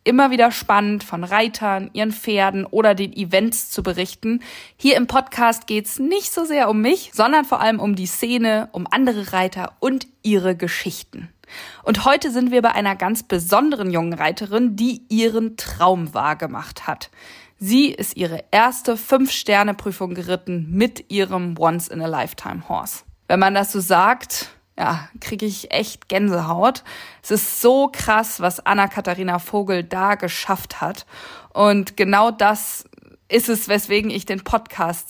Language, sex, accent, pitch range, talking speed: German, female, German, 190-245 Hz, 150 wpm